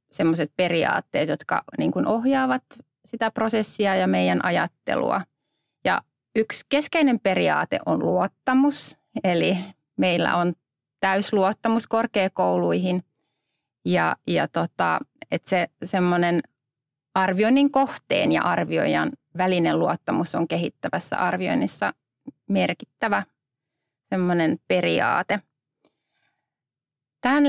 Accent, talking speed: native, 85 wpm